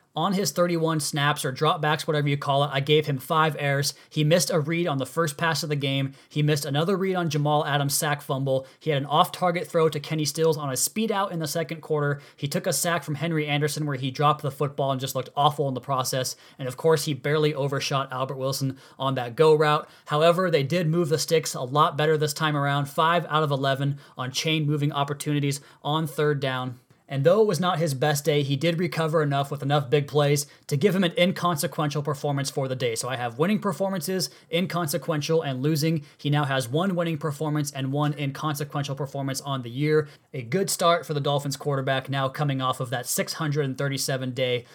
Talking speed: 215 wpm